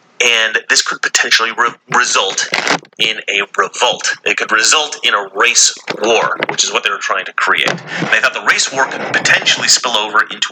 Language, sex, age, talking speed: English, male, 30-49, 190 wpm